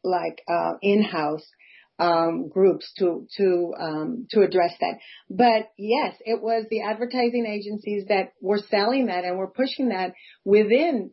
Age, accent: 40-59, American